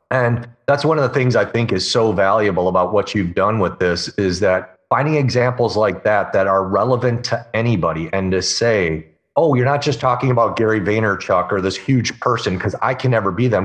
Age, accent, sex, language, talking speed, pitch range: 40-59, American, male, English, 215 wpm, 95-125 Hz